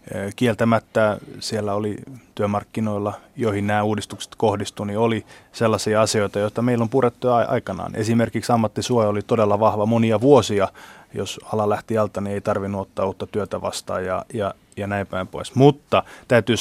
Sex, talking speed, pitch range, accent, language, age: male, 150 wpm, 110-125 Hz, native, Finnish, 20-39